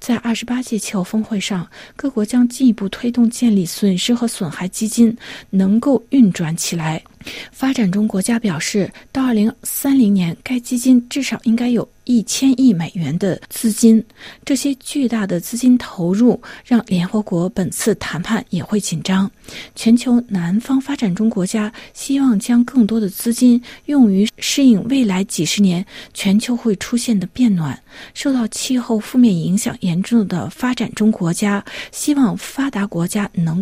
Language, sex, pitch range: Chinese, female, 195-245 Hz